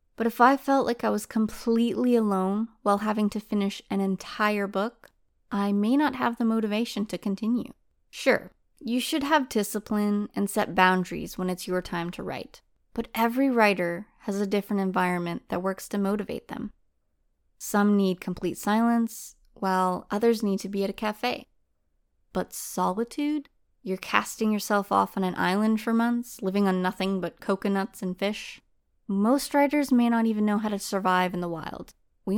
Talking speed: 170 wpm